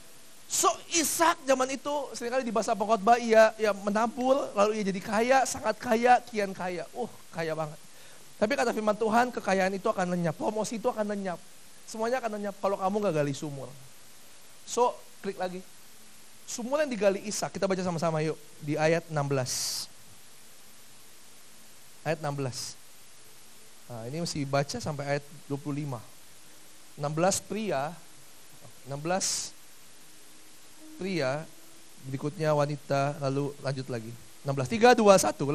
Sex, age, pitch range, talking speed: male, 30-49, 155-245 Hz, 130 wpm